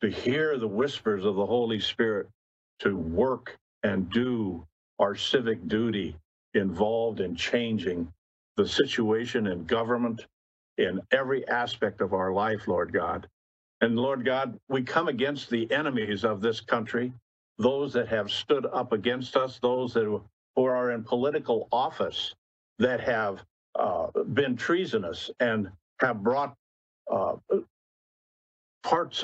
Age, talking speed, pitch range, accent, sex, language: 50-69, 130 wpm, 105-125 Hz, American, male, English